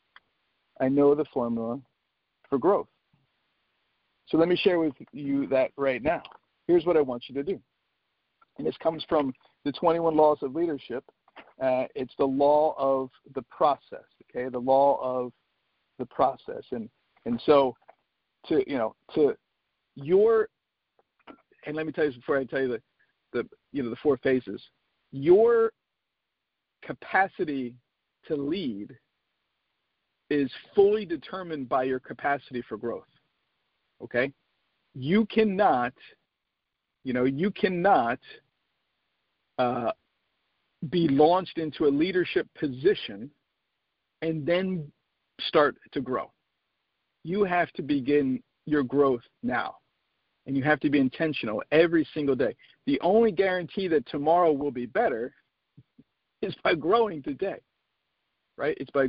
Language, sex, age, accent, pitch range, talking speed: English, male, 50-69, American, 135-180 Hz, 135 wpm